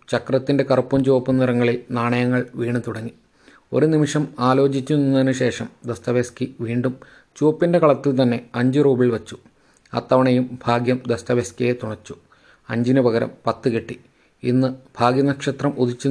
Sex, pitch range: male, 120-130 Hz